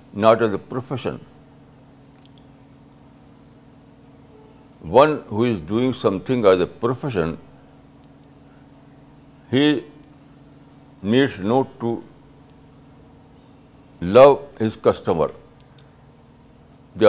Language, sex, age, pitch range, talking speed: Urdu, male, 60-79, 130-140 Hz, 70 wpm